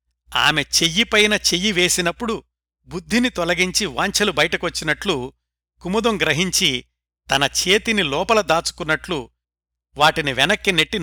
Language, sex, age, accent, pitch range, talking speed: Telugu, male, 60-79, native, 125-195 Hz, 85 wpm